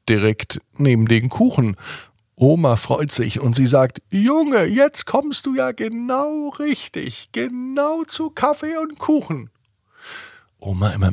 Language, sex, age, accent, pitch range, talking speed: German, male, 50-69, German, 105-165 Hz, 130 wpm